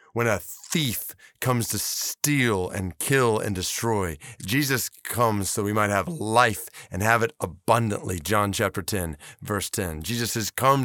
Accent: American